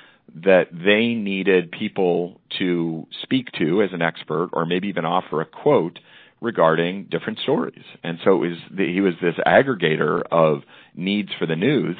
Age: 40-59